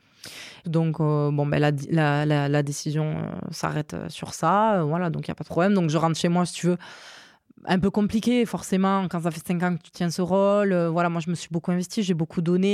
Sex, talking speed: female, 265 wpm